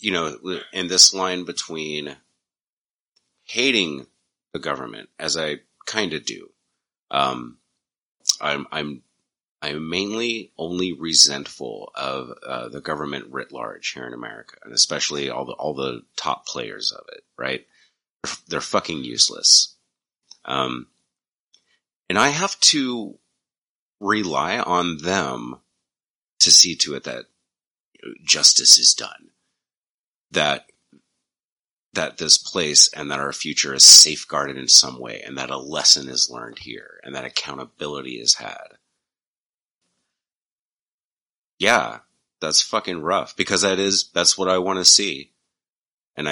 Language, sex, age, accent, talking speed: English, male, 30-49, American, 130 wpm